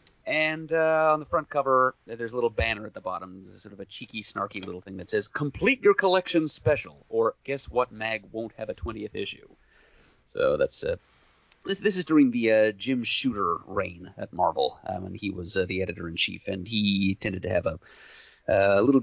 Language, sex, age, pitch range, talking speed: English, male, 30-49, 95-130 Hz, 200 wpm